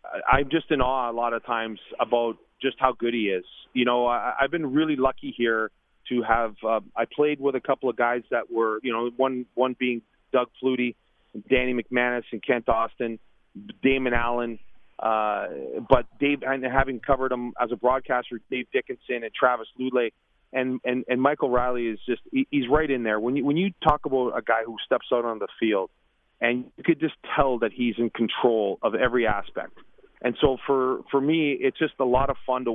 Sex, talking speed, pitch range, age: male, 210 wpm, 120-140 Hz, 30-49